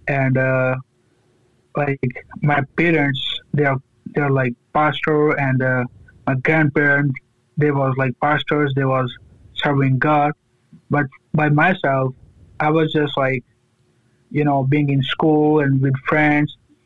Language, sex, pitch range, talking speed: English, male, 125-150 Hz, 130 wpm